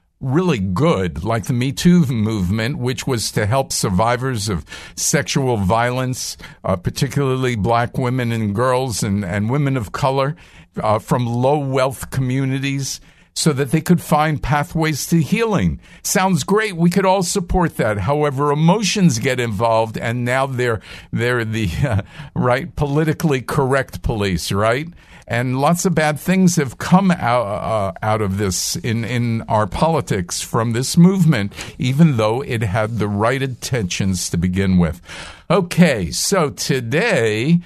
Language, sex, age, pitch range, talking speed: English, male, 50-69, 105-155 Hz, 150 wpm